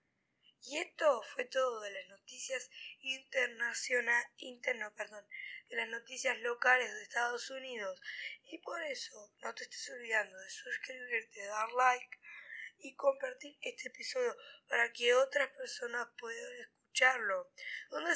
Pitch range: 235-270 Hz